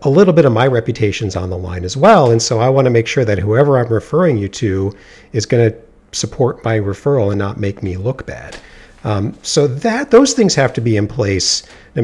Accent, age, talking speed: American, 50-69, 235 wpm